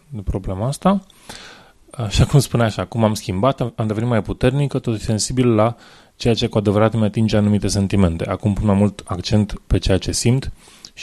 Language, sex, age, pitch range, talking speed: English, male, 20-39, 100-120 Hz, 185 wpm